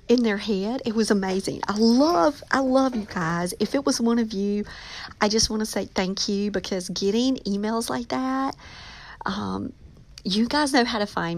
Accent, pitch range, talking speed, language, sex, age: American, 200-255 Hz, 195 wpm, English, female, 50-69